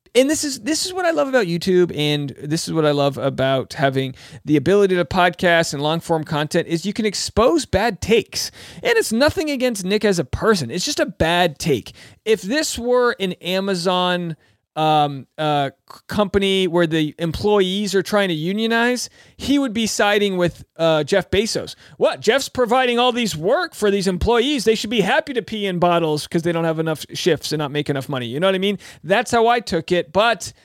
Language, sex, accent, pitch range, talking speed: English, male, American, 150-205 Hz, 210 wpm